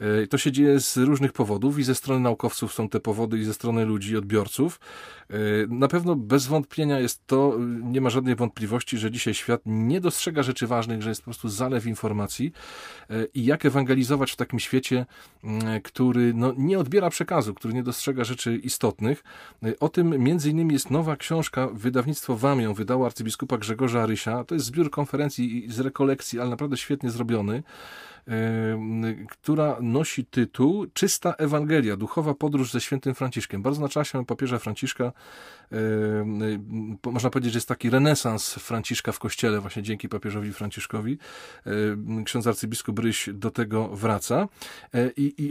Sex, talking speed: male, 150 wpm